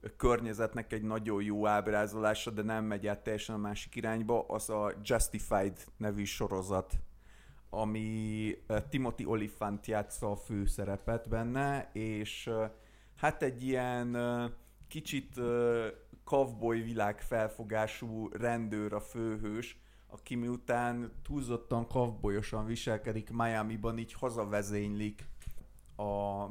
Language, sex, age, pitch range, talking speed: Hungarian, male, 30-49, 105-120 Hz, 100 wpm